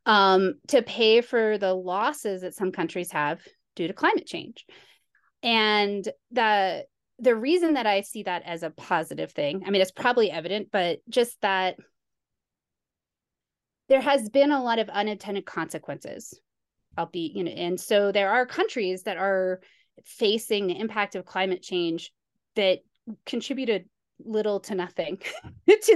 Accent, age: American, 20-39